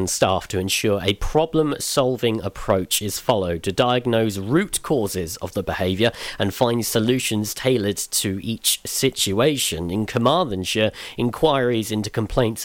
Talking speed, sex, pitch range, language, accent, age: 130 wpm, male, 100-125 Hz, English, British, 40-59